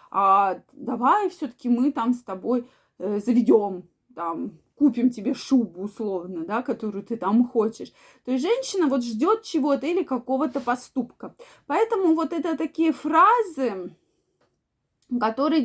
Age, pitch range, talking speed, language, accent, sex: 20-39, 225-300 Hz, 125 wpm, Russian, native, female